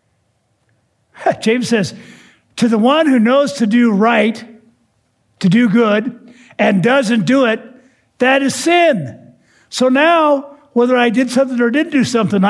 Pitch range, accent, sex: 155-220 Hz, American, male